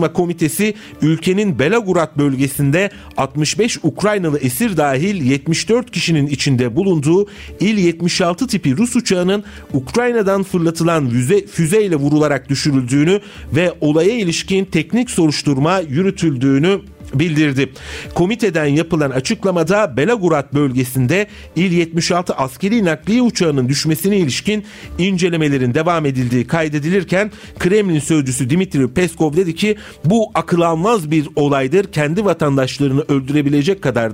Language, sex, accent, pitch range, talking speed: Turkish, male, native, 140-185 Hz, 105 wpm